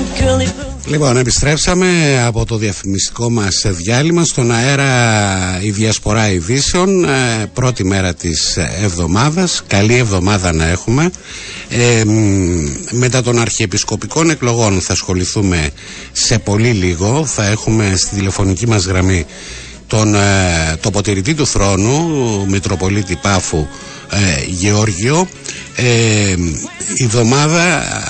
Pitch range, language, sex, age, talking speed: 95-125 Hz, Greek, male, 60-79, 95 wpm